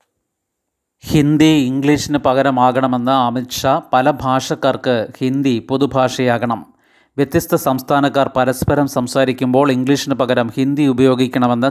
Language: Malayalam